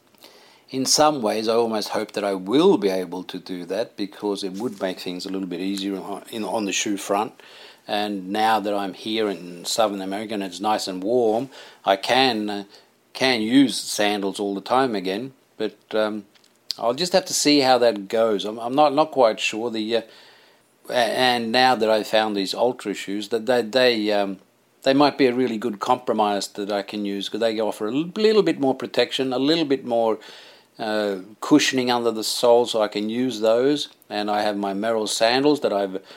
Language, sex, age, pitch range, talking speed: English, male, 50-69, 100-130 Hz, 200 wpm